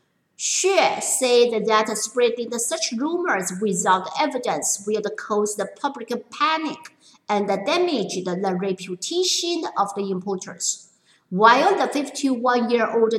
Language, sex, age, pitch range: Chinese, female, 50-69, 205-280 Hz